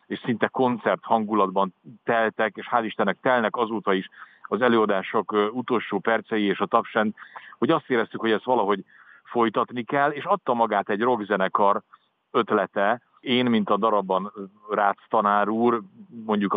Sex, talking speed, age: male, 140 wpm, 50-69